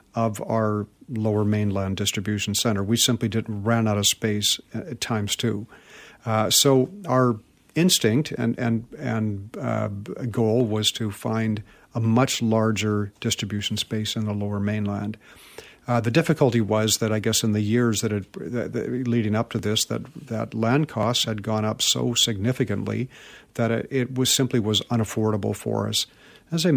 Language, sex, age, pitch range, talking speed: English, male, 50-69, 110-120 Hz, 165 wpm